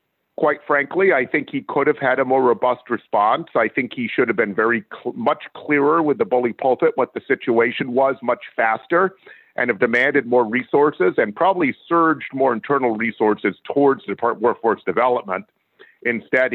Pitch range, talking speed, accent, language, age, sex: 125-165 Hz, 180 wpm, American, English, 50-69, male